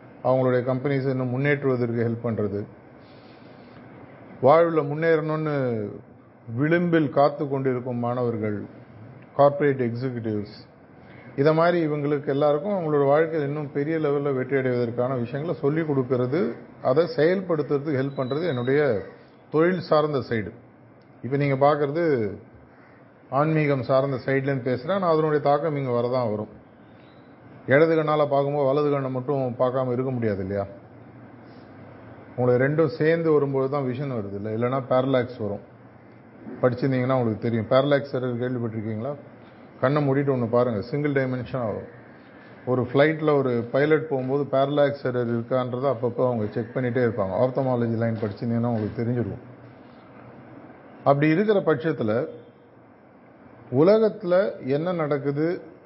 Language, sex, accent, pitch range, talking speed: Tamil, male, native, 120-145 Hz, 110 wpm